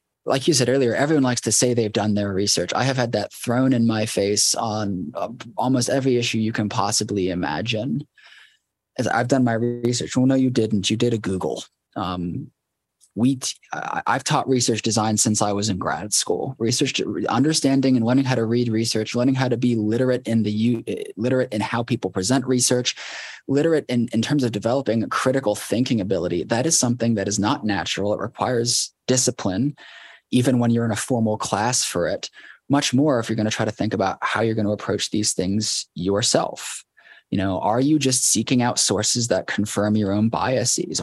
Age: 20-39